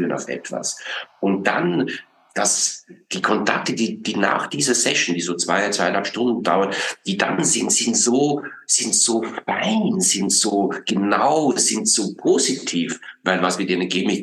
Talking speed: 160 wpm